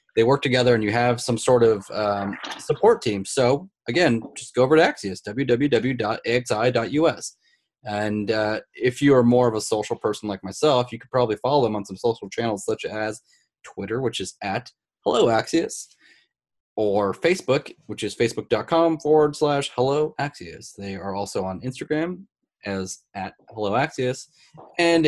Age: 20-39